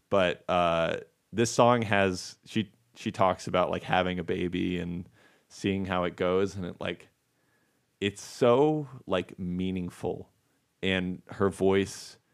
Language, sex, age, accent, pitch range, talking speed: English, male, 30-49, American, 90-110 Hz, 140 wpm